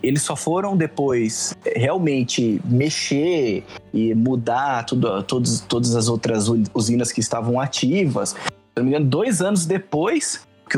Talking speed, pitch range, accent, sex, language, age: 140 wpm, 115-150 Hz, Brazilian, male, Portuguese, 20-39